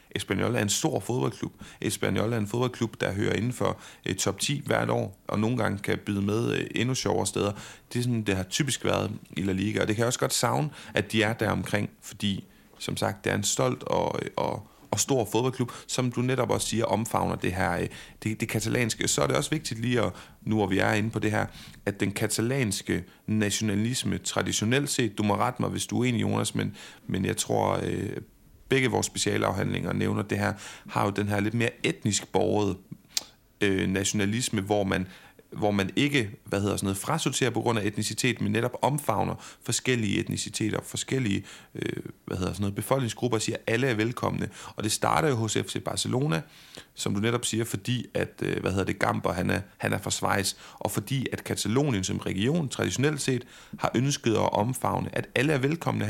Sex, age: male, 40-59